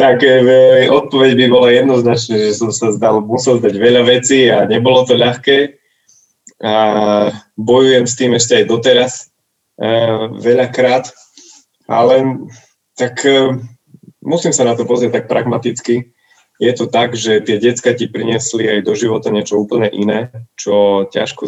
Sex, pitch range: male, 110-130 Hz